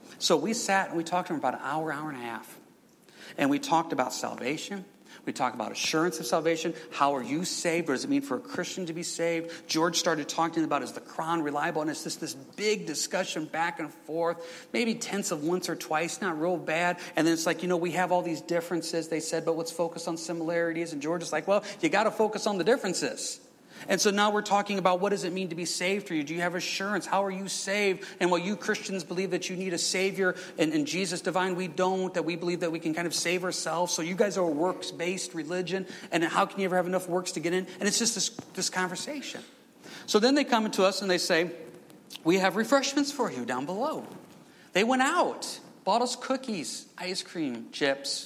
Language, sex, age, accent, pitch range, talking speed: English, male, 40-59, American, 165-195 Hz, 240 wpm